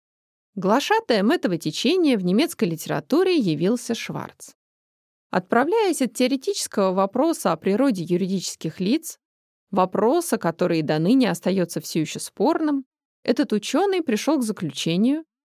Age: 20-39